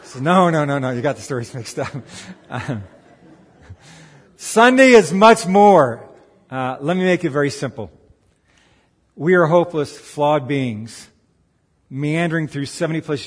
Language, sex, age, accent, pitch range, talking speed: English, male, 50-69, American, 130-180 Hz, 135 wpm